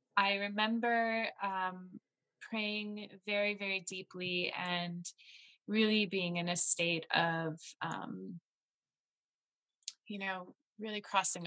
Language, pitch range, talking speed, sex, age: English, 165-190 Hz, 100 wpm, female, 20-39